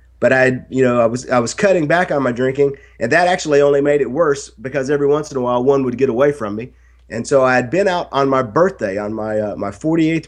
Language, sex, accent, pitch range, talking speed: English, male, American, 110-145 Hz, 270 wpm